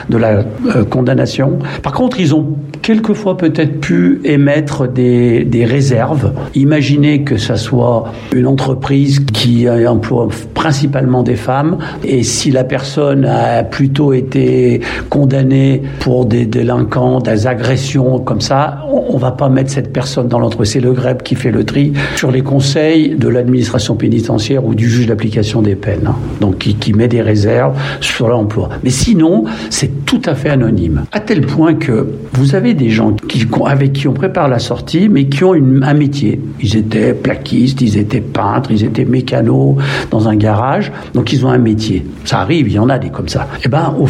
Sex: male